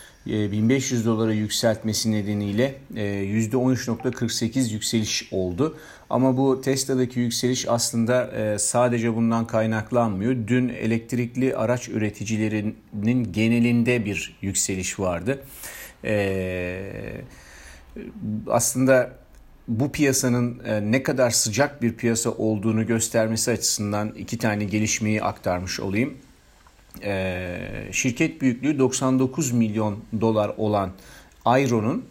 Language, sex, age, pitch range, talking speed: Turkish, male, 40-59, 105-125 Hz, 90 wpm